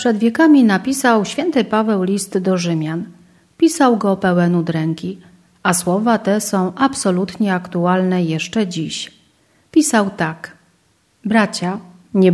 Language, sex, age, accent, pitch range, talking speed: Polish, female, 40-59, native, 175-225 Hz, 115 wpm